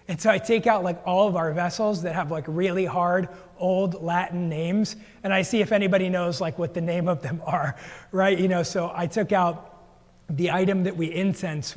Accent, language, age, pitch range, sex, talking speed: American, English, 30-49, 160-195 Hz, male, 220 wpm